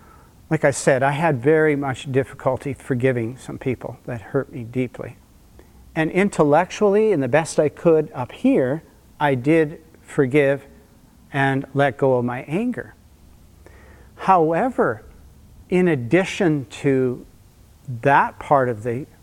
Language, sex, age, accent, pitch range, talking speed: English, male, 50-69, American, 130-160 Hz, 130 wpm